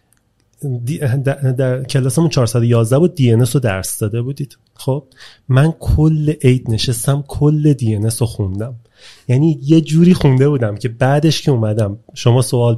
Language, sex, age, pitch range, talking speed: Persian, male, 30-49, 115-150 Hz, 150 wpm